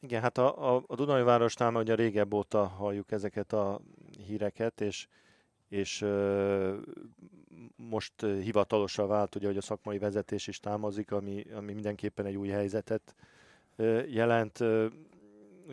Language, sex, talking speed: Hungarian, male, 135 wpm